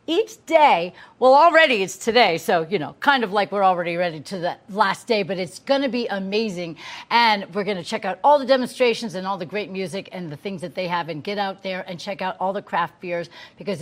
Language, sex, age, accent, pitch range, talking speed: English, female, 50-69, American, 195-260 Hz, 245 wpm